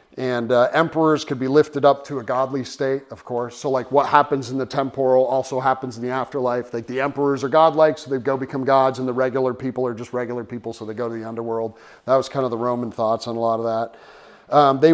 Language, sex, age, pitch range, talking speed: English, male, 40-59, 125-145 Hz, 255 wpm